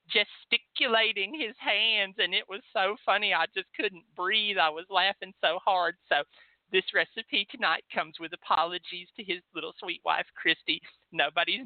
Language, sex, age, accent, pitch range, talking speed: English, male, 50-69, American, 155-210 Hz, 160 wpm